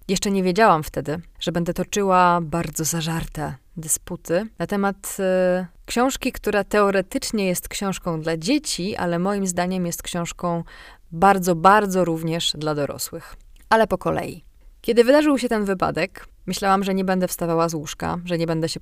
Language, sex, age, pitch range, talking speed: Polish, female, 20-39, 165-200 Hz, 155 wpm